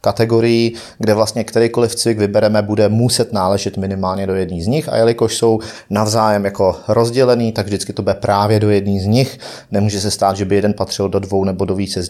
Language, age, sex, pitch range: Czech, 30-49, male, 100-120 Hz